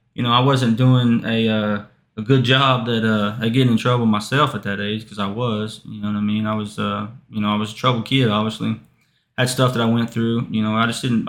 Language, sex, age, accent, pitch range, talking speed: English, male, 20-39, American, 110-130 Hz, 265 wpm